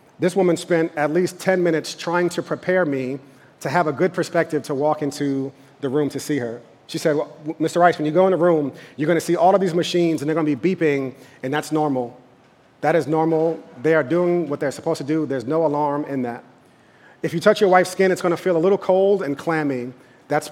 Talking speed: 245 wpm